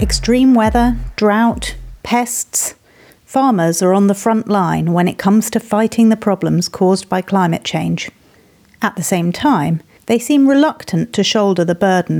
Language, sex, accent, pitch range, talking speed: English, female, British, 175-215 Hz, 155 wpm